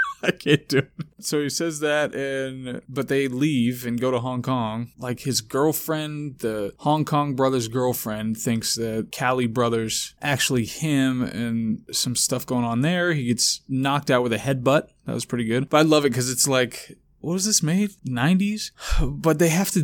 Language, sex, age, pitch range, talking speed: English, male, 20-39, 120-150 Hz, 195 wpm